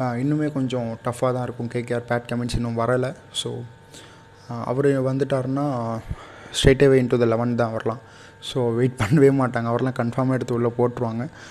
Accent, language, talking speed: native, Tamil, 150 wpm